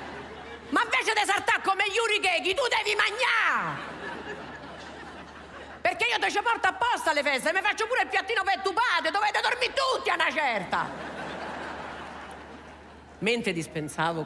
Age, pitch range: 50-69, 155-235 Hz